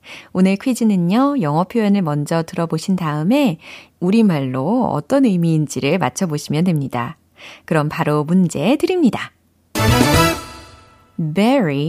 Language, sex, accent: Korean, female, native